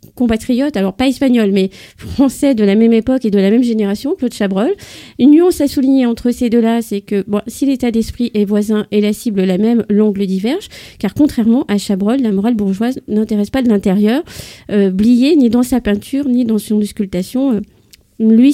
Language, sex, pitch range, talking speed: French, female, 205-260 Hz, 200 wpm